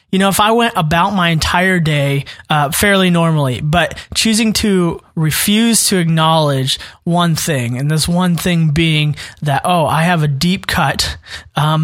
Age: 20-39